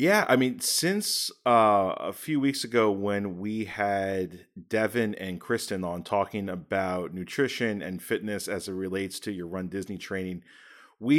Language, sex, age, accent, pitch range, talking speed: English, male, 30-49, American, 100-125 Hz, 160 wpm